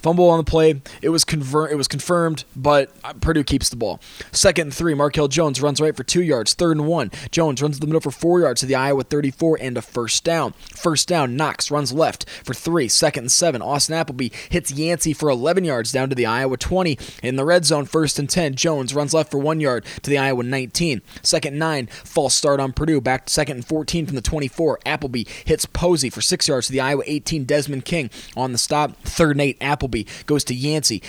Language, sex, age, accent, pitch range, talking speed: English, male, 20-39, American, 135-160 Hz, 235 wpm